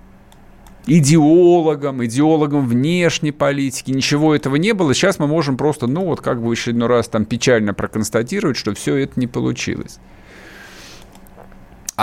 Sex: male